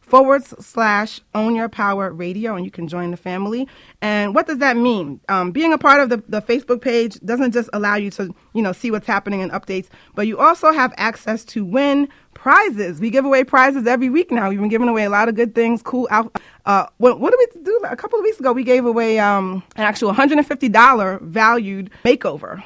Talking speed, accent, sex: 225 wpm, American, female